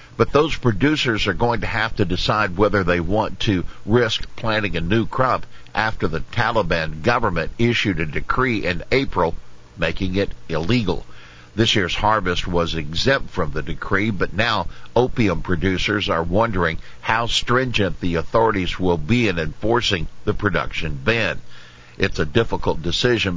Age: 60-79